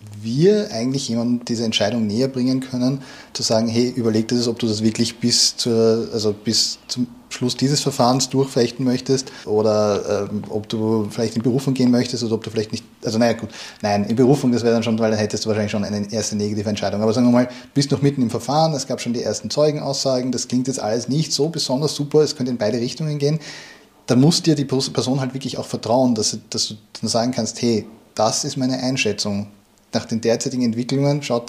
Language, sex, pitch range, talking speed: German, male, 110-130 Hz, 220 wpm